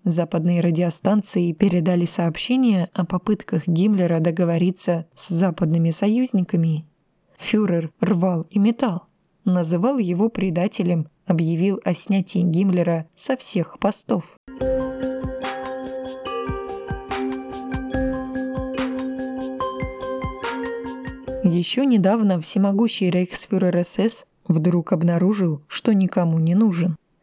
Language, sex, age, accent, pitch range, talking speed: Russian, female, 20-39, native, 170-200 Hz, 80 wpm